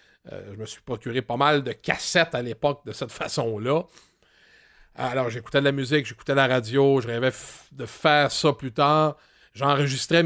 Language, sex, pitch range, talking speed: English, male, 130-160 Hz, 185 wpm